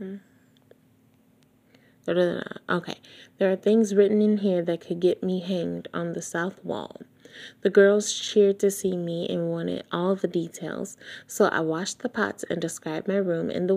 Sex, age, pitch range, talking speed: female, 20-39, 180-225 Hz, 165 wpm